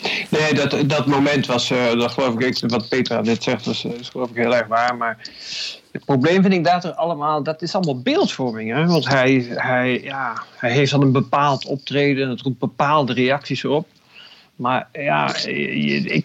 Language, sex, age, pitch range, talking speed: Dutch, male, 50-69, 135-190 Hz, 190 wpm